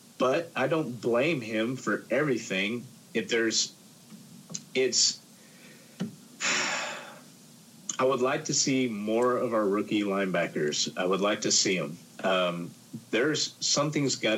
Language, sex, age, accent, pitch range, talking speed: English, male, 40-59, American, 110-150 Hz, 125 wpm